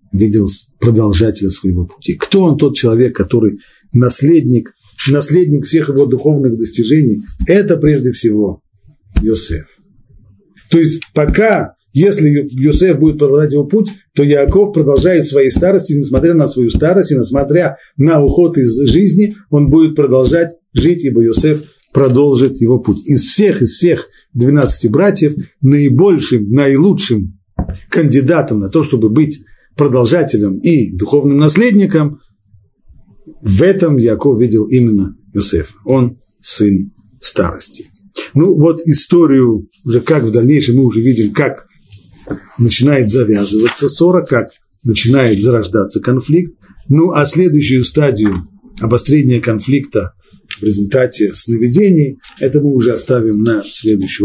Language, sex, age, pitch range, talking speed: Russian, male, 50-69, 110-155 Hz, 125 wpm